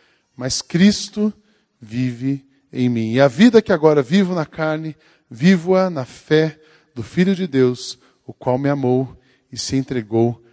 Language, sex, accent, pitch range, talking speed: Portuguese, male, Brazilian, 120-165 Hz, 155 wpm